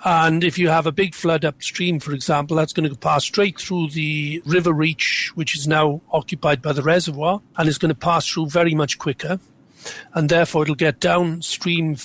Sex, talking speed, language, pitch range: male, 200 wpm, English, 150-170 Hz